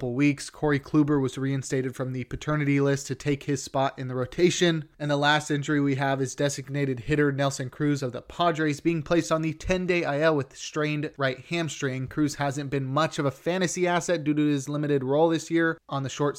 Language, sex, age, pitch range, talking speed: English, male, 20-39, 135-160 Hz, 210 wpm